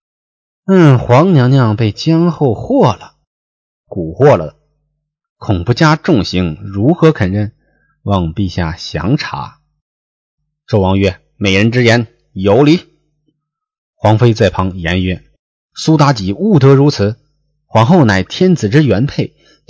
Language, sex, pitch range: Chinese, male, 100-150 Hz